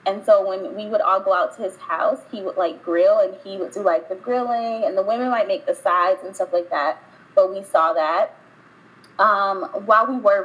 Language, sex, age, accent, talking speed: English, female, 20-39, American, 235 wpm